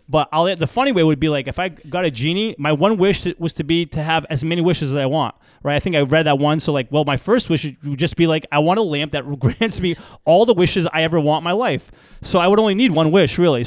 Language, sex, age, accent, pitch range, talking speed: English, male, 30-49, American, 140-180 Hz, 300 wpm